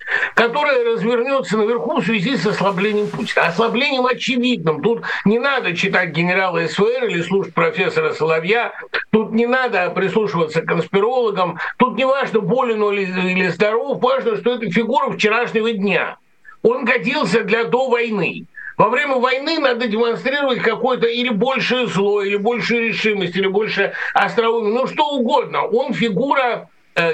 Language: Russian